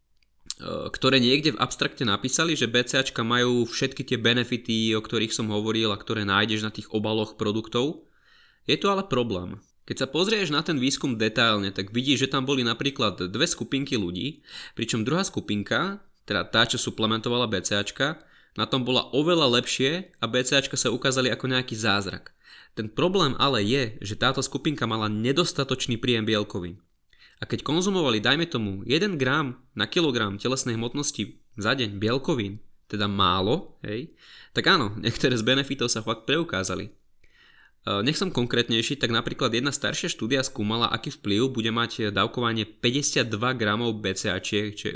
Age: 20-39